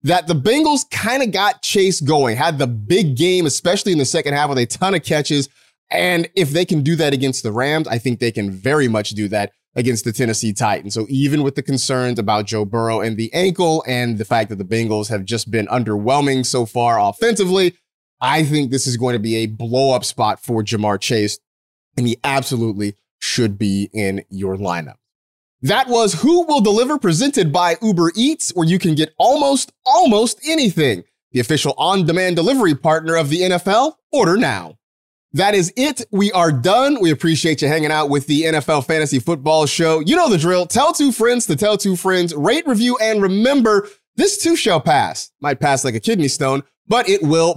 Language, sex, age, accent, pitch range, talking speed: English, male, 30-49, American, 125-195 Hz, 200 wpm